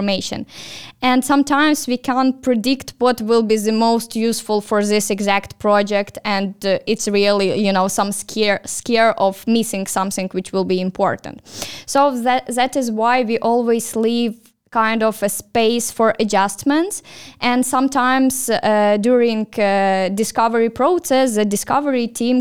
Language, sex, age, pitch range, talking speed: English, female, 10-29, 205-245 Hz, 145 wpm